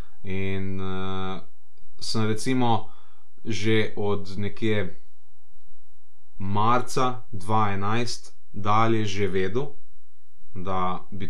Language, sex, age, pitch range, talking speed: English, male, 30-49, 95-120 Hz, 75 wpm